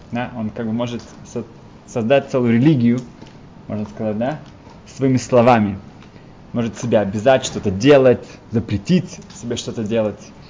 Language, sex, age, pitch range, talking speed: Russian, male, 20-39, 110-145 Hz, 125 wpm